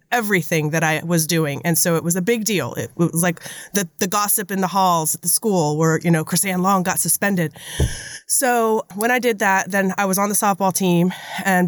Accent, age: American, 30-49